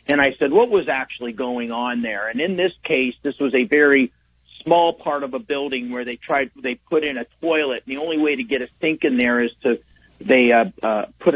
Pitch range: 120-150 Hz